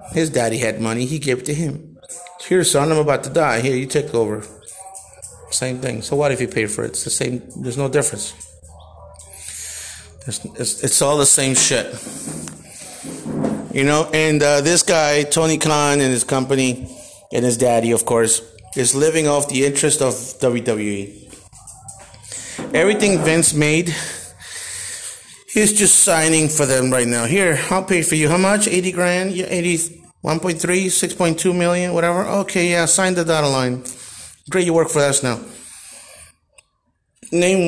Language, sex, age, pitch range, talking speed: English, male, 30-49, 115-160 Hz, 160 wpm